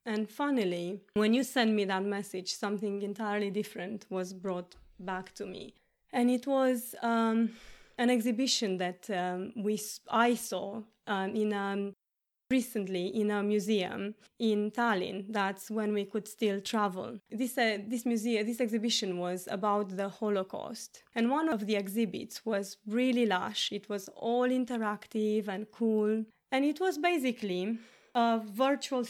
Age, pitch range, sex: 20-39, 205-240 Hz, female